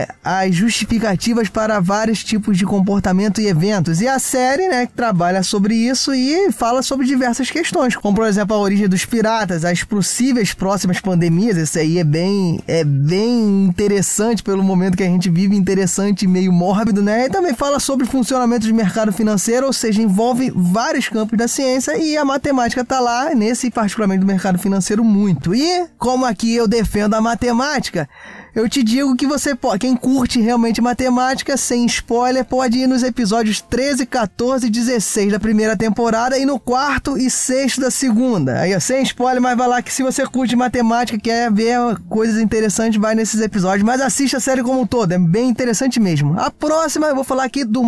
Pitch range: 200-255 Hz